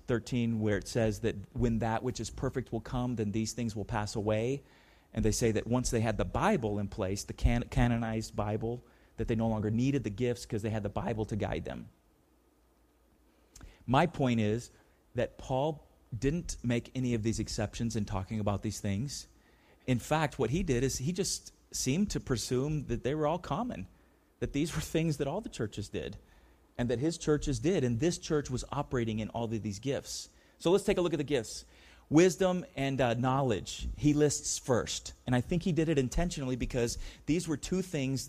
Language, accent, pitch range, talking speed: English, American, 110-140 Hz, 205 wpm